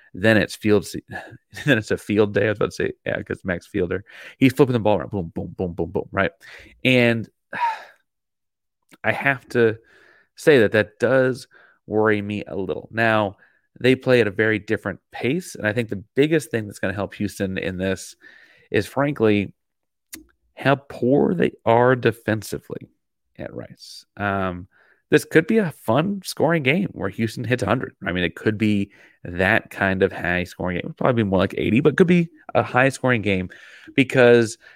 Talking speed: 190 wpm